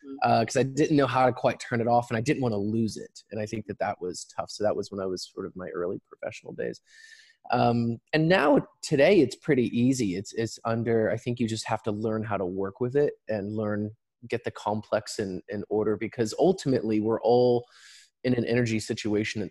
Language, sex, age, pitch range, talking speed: English, male, 20-39, 110-150 Hz, 230 wpm